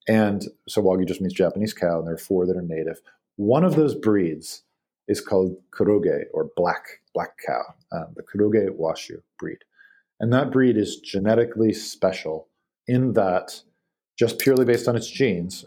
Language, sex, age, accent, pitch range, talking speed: English, male, 40-59, American, 95-115 Hz, 170 wpm